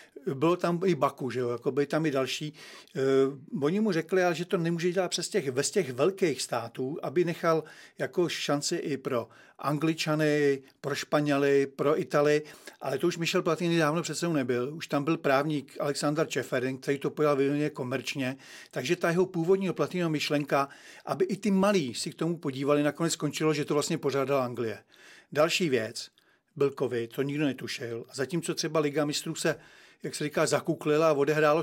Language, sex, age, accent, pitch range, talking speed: Czech, male, 40-59, native, 140-165 Hz, 175 wpm